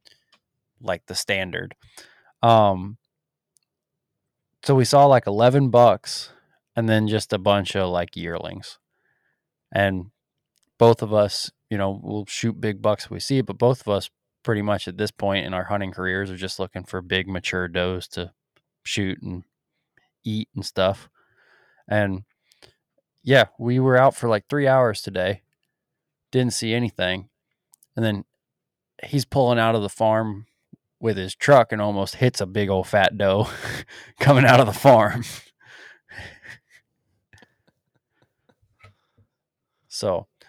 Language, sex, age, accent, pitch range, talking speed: English, male, 20-39, American, 95-120 Hz, 140 wpm